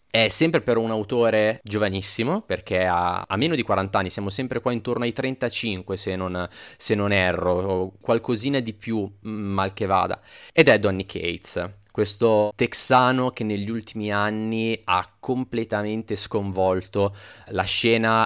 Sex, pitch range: male, 95-115 Hz